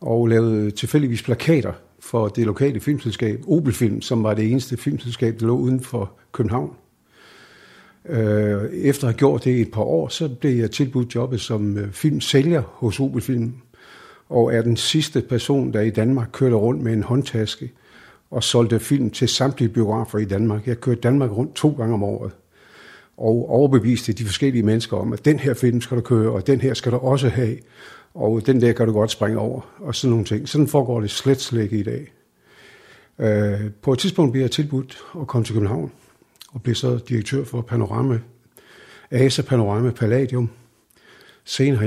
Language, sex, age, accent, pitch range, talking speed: Danish, male, 60-79, native, 110-130 Hz, 180 wpm